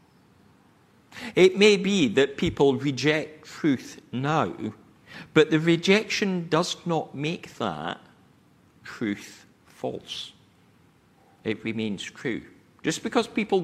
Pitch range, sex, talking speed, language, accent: 115-175 Hz, male, 100 wpm, English, British